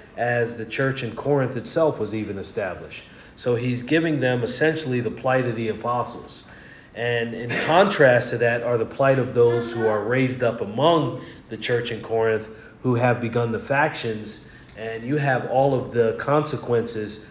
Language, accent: English, American